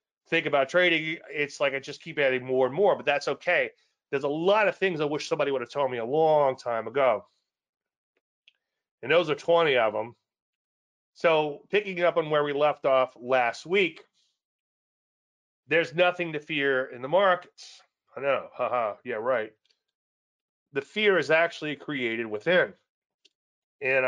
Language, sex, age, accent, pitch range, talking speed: English, male, 30-49, American, 125-165 Hz, 165 wpm